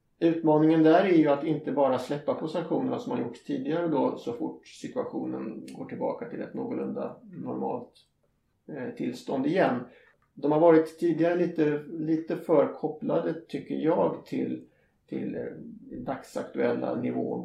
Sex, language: male, Swedish